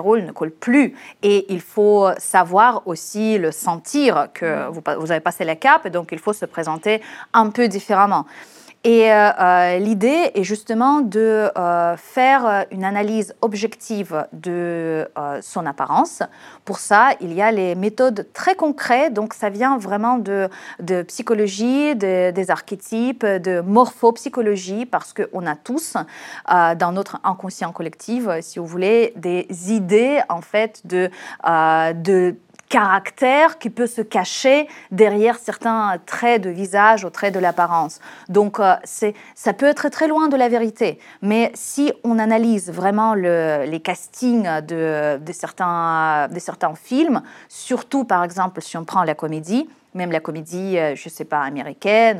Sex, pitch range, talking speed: female, 175-230 Hz, 155 wpm